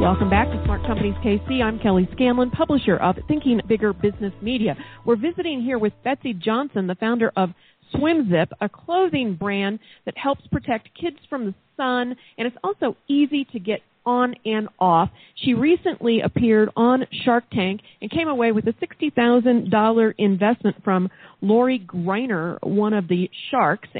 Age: 40-59